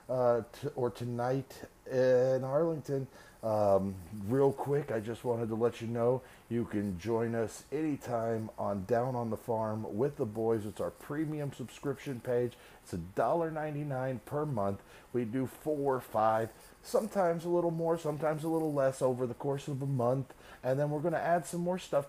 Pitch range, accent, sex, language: 110-140 Hz, American, male, English